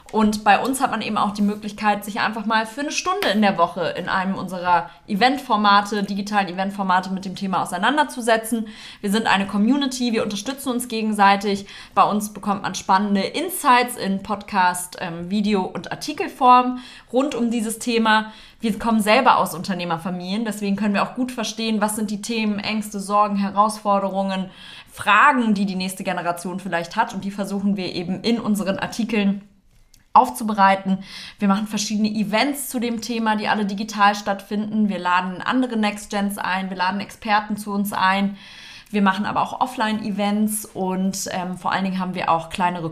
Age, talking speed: 20-39, 170 wpm